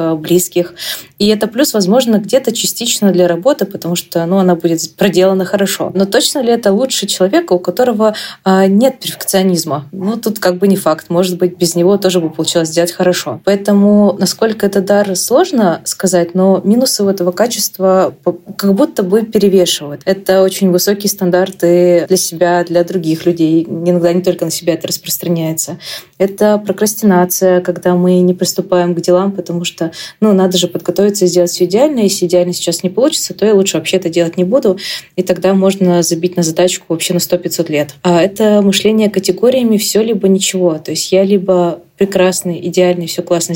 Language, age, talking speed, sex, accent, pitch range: Russian, 20-39, 175 wpm, female, native, 175-200 Hz